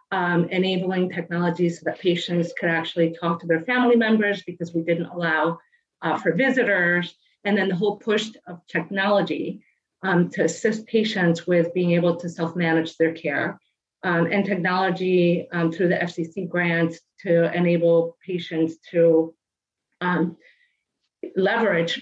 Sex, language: female, English